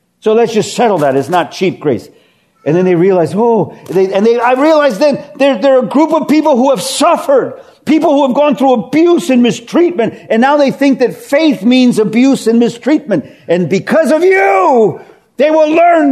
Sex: male